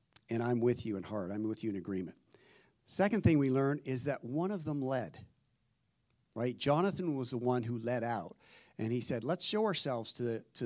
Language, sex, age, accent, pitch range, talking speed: English, male, 50-69, American, 110-140 Hz, 210 wpm